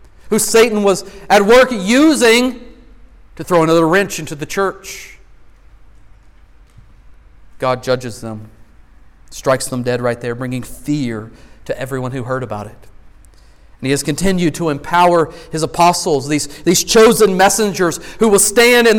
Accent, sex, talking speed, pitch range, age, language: American, male, 140 wpm, 120-190 Hz, 40-59, English